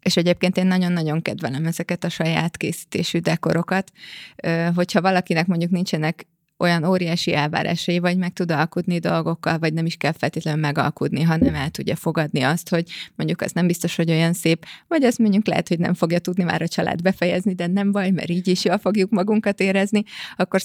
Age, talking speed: 20-39, 185 wpm